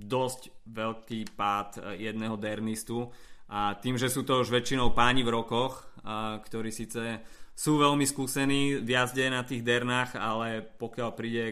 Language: Slovak